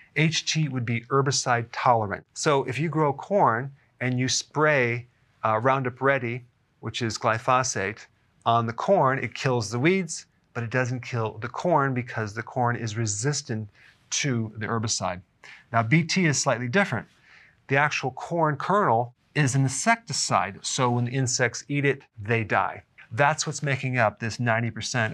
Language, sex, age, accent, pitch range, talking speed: English, male, 40-59, American, 115-145 Hz, 160 wpm